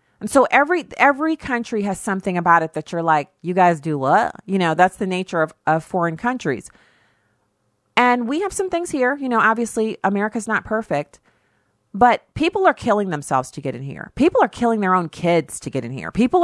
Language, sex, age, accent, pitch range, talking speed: English, female, 40-59, American, 155-195 Hz, 210 wpm